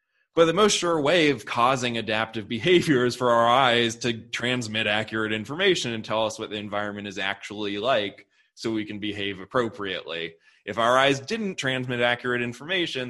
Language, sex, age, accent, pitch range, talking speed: English, male, 20-39, American, 110-135 Hz, 175 wpm